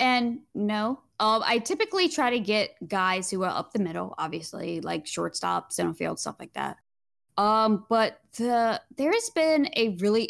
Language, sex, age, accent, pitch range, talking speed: English, female, 10-29, American, 165-205 Hz, 165 wpm